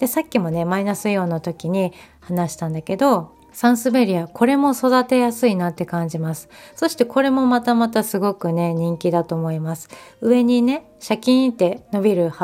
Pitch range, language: 175-245 Hz, Japanese